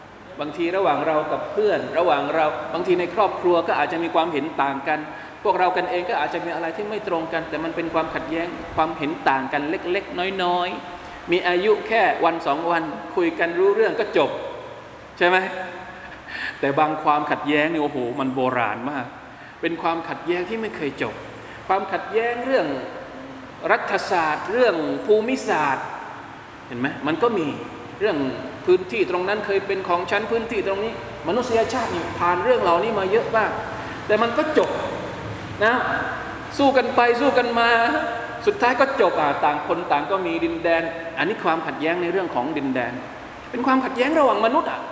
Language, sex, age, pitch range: Thai, male, 20-39, 165-250 Hz